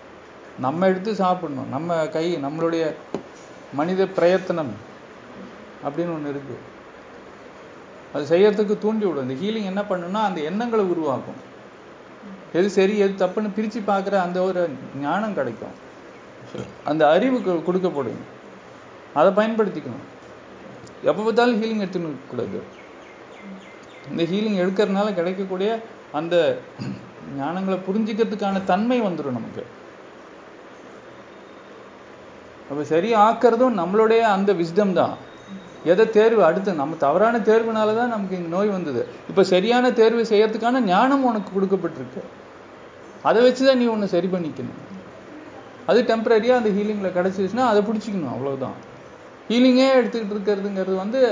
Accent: native